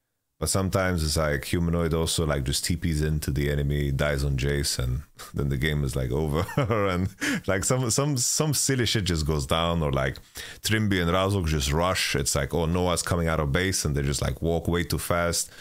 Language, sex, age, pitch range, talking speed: English, male, 30-49, 75-95 Hz, 210 wpm